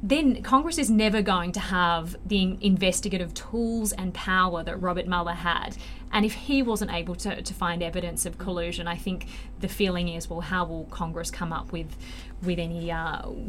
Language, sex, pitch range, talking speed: English, female, 175-200 Hz, 185 wpm